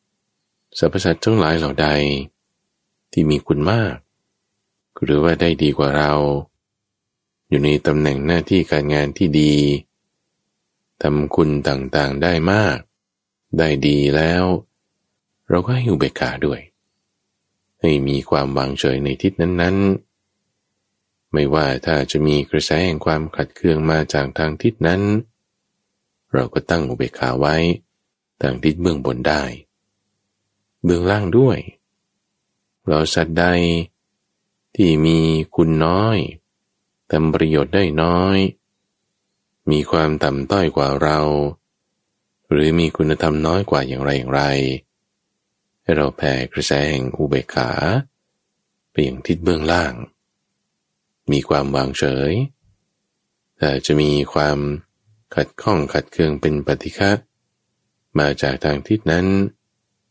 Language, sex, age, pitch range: English, male, 20-39, 75-95 Hz